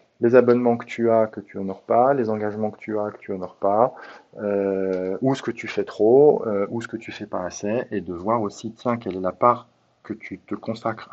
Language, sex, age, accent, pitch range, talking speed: French, male, 30-49, French, 100-130 Hz, 250 wpm